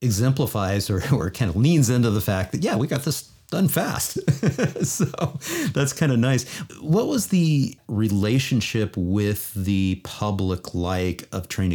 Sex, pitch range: male, 90-115 Hz